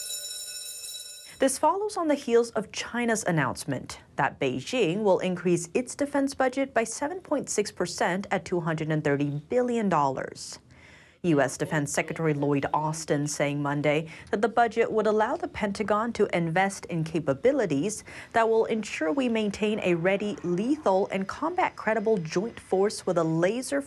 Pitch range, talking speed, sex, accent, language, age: 160-235 Hz, 135 wpm, female, American, English, 30-49